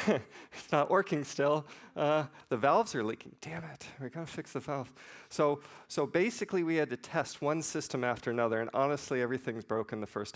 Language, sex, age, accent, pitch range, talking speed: English, male, 40-59, American, 115-130 Hz, 190 wpm